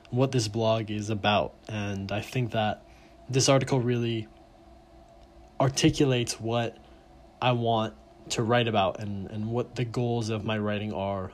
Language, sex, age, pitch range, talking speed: English, male, 20-39, 95-125 Hz, 150 wpm